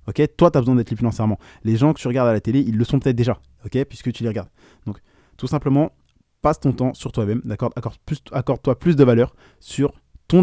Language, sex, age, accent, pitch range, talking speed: French, male, 20-39, French, 115-140 Hz, 255 wpm